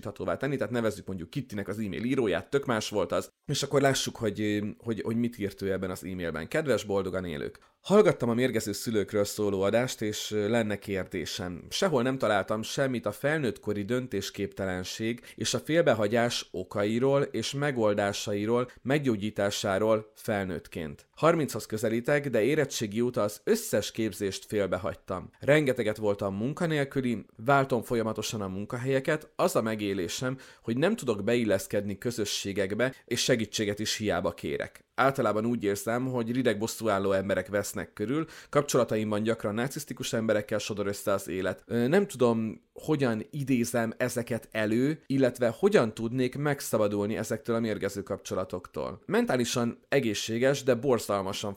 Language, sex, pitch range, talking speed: Hungarian, male, 105-130 Hz, 135 wpm